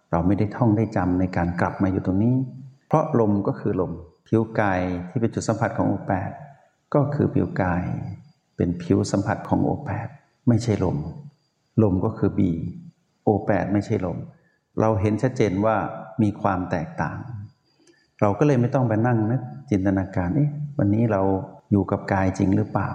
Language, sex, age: Thai, male, 60-79